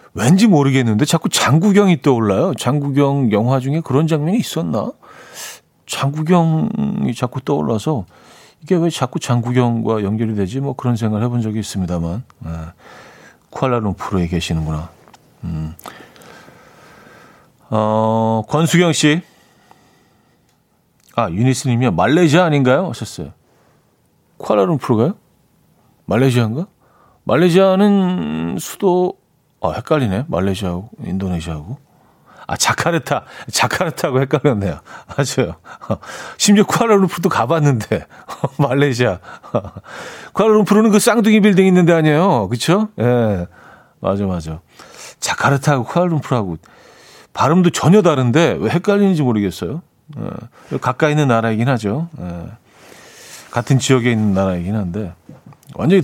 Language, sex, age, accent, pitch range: Korean, male, 40-59, native, 105-170 Hz